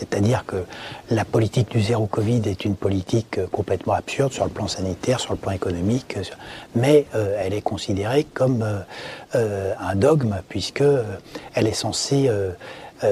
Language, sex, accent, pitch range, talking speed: French, male, French, 100-125 Hz, 160 wpm